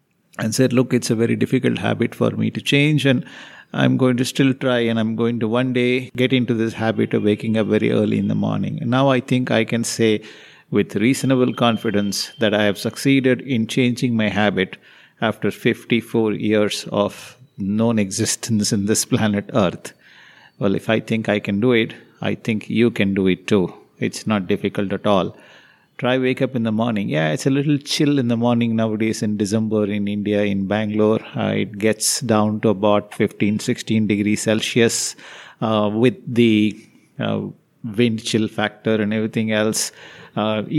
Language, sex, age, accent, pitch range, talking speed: English, male, 50-69, Indian, 105-125 Hz, 185 wpm